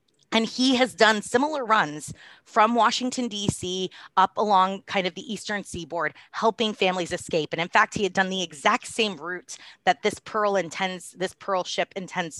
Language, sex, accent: English, female, American